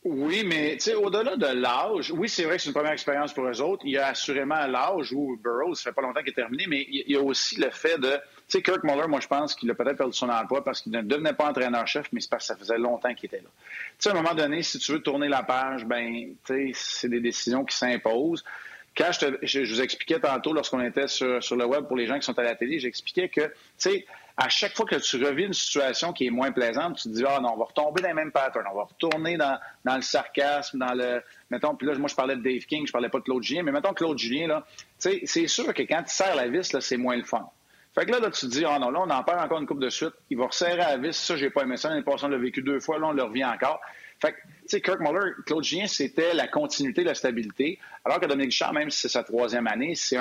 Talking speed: 290 wpm